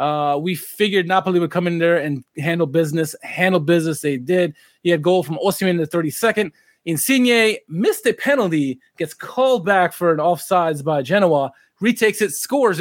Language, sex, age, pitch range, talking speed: English, male, 20-39, 160-190 Hz, 180 wpm